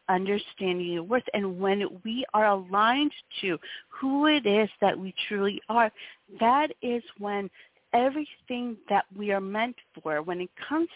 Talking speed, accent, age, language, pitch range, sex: 155 wpm, American, 40-59, English, 190-250 Hz, female